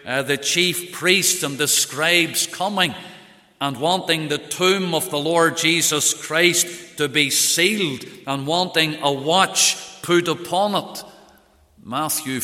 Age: 50-69